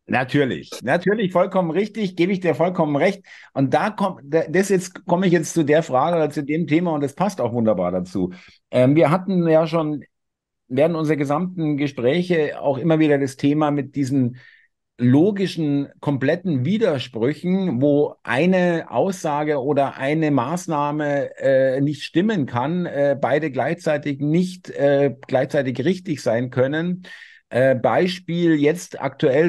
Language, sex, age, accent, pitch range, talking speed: German, male, 50-69, German, 130-160 Hz, 145 wpm